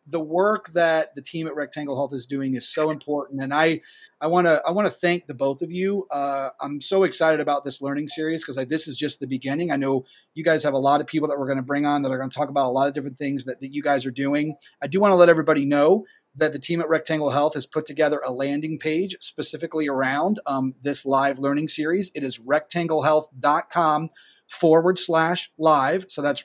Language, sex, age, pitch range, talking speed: English, male, 30-49, 140-160 Hz, 240 wpm